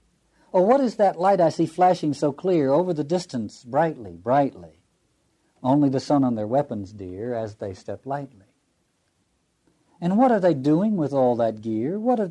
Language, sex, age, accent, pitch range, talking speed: English, male, 50-69, American, 115-165 Hz, 180 wpm